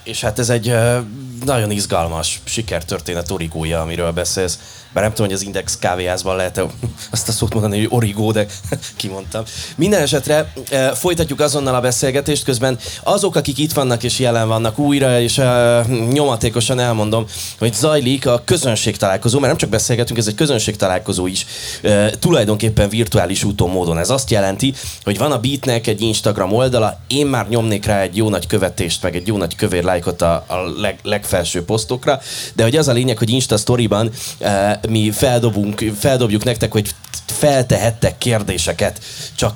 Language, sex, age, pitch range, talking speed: Hungarian, male, 20-39, 100-125 Hz, 160 wpm